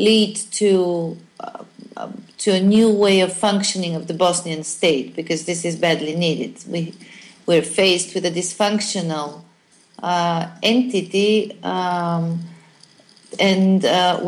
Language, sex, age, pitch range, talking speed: English, female, 40-59, 180-215 Hz, 120 wpm